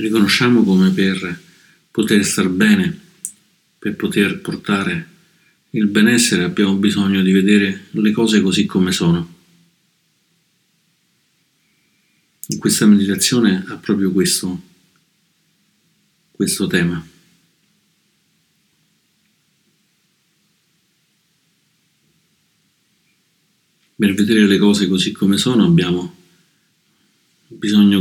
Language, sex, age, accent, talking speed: Italian, male, 50-69, native, 80 wpm